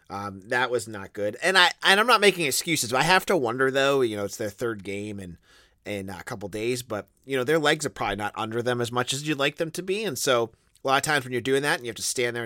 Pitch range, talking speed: 105-145 Hz, 310 wpm